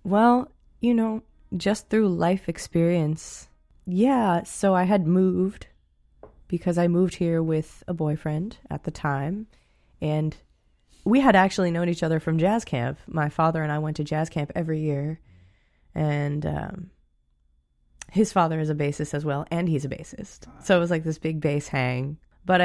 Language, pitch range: English, 140-180 Hz